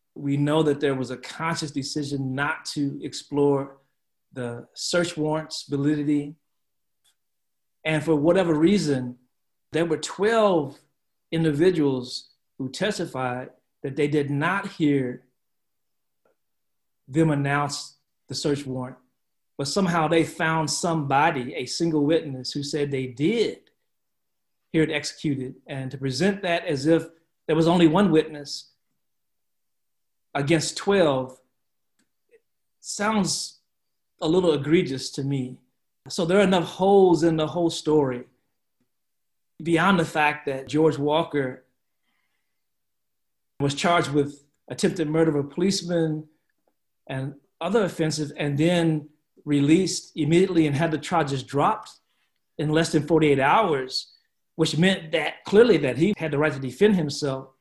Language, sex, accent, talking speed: English, male, American, 125 wpm